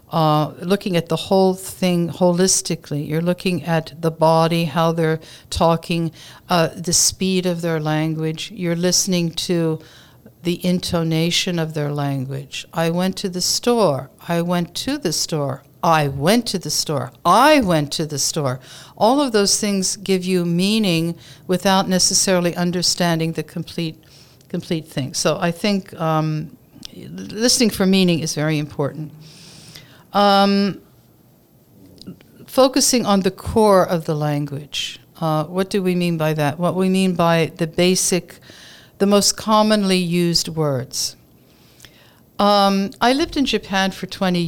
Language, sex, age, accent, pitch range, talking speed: English, female, 60-79, American, 155-185 Hz, 145 wpm